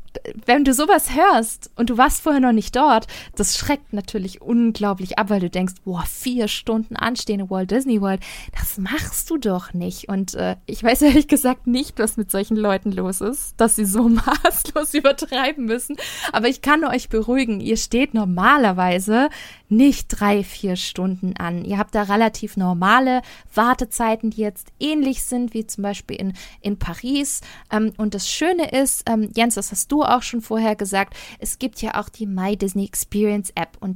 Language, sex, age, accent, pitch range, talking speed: German, female, 20-39, German, 205-260 Hz, 180 wpm